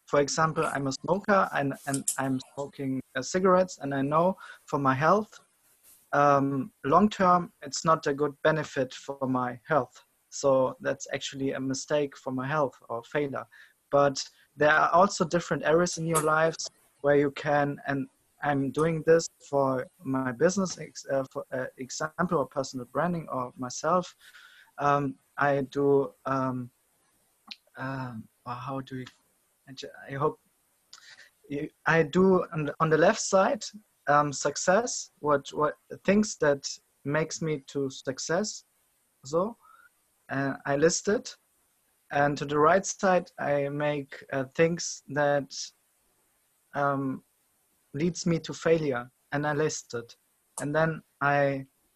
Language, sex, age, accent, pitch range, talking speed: English, male, 30-49, German, 135-165 Hz, 135 wpm